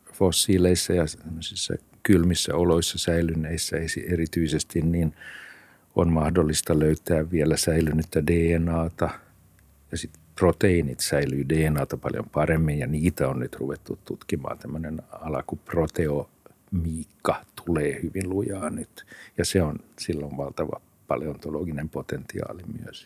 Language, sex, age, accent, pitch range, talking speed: Finnish, male, 50-69, native, 80-110 Hz, 110 wpm